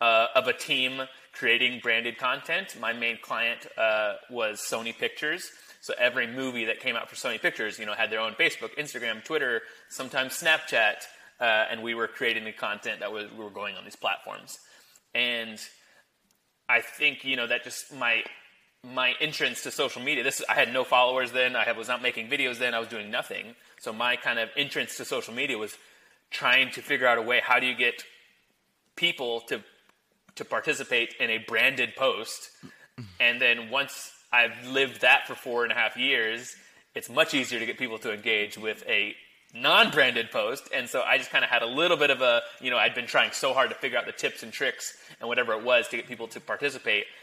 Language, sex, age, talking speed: English, male, 30-49, 210 wpm